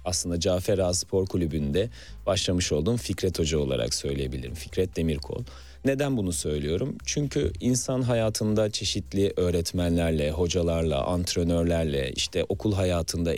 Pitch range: 85-120 Hz